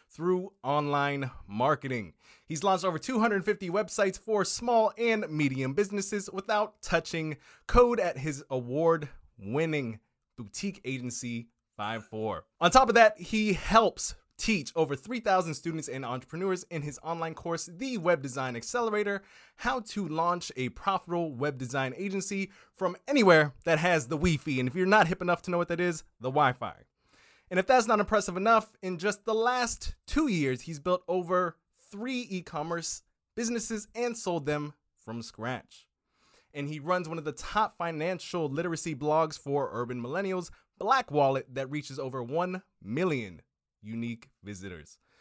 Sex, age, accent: male, 20-39, American